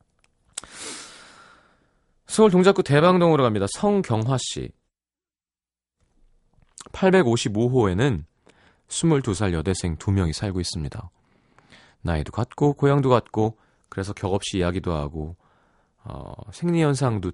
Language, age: Korean, 30-49